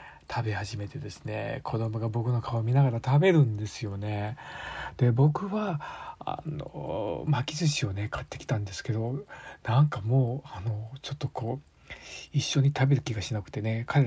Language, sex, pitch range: Japanese, male, 115-145 Hz